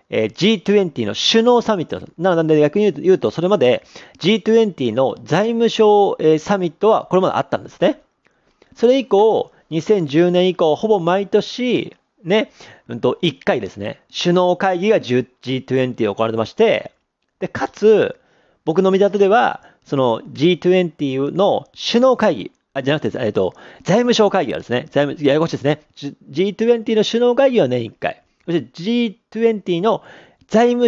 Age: 40-59